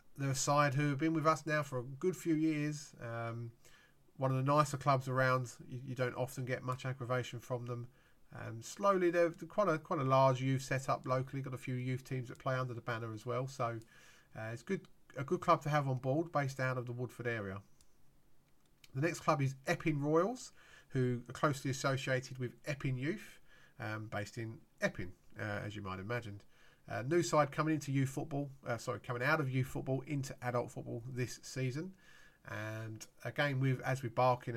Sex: male